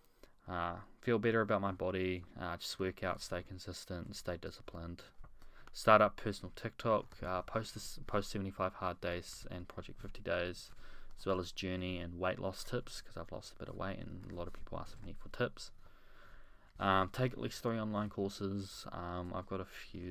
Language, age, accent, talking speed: English, 20-39, Australian, 195 wpm